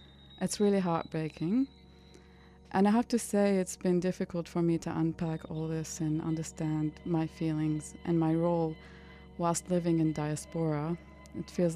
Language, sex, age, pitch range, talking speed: English, female, 20-39, 155-175 Hz, 155 wpm